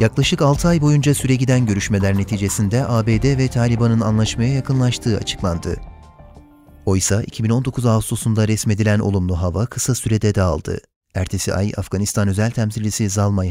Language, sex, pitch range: Turkish, male, 95-120 Hz